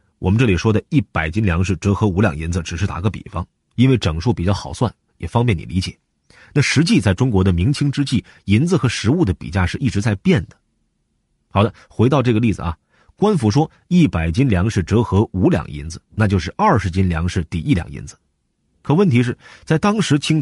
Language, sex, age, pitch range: Chinese, male, 30-49, 90-135 Hz